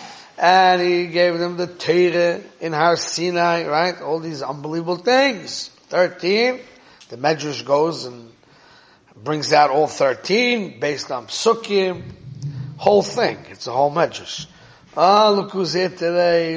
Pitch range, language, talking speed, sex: 145-185 Hz, English, 140 wpm, male